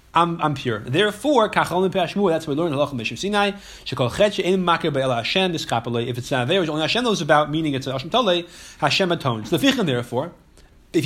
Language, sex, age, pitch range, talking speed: English, male, 30-49, 140-205 Hz, 140 wpm